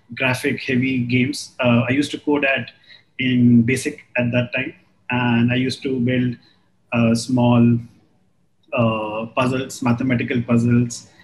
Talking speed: 135 wpm